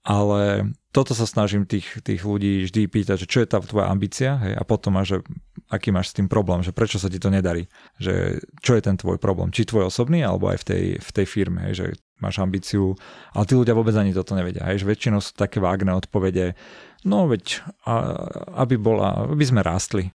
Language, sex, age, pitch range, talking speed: Slovak, male, 40-59, 95-110 Hz, 215 wpm